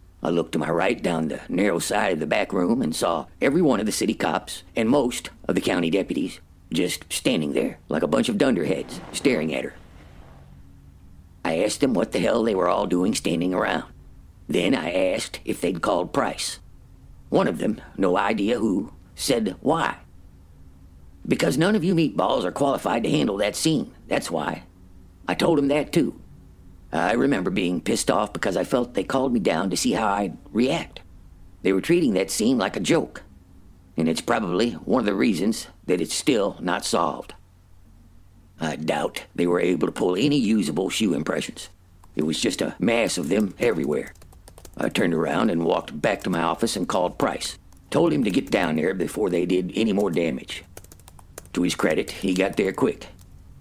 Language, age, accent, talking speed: English, 50-69, American, 190 wpm